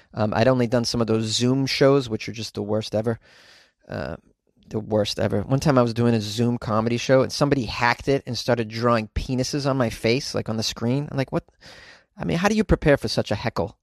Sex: male